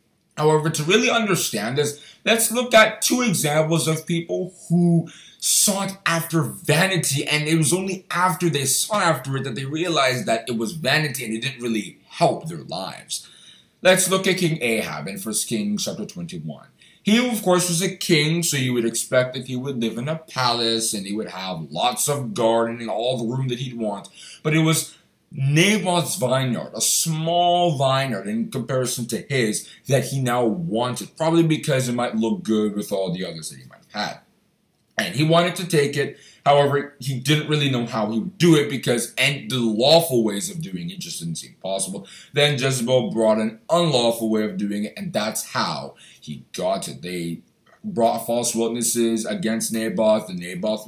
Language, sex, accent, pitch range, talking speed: English, male, American, 115-170 Hz, 190 wpm